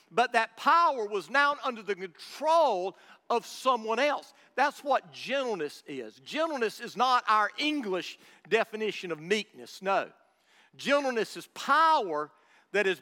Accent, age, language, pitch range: American, 50-69, English, 195-265 Hz